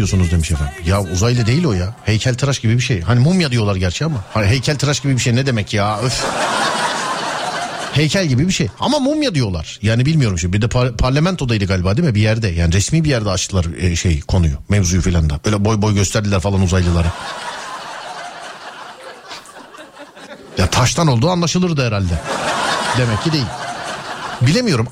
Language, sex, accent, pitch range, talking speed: Turkish, male, native, 100-145 Hz, 170 wpm